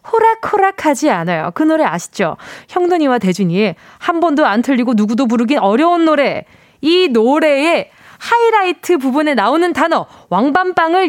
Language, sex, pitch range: Korean, female, 215-340 Hz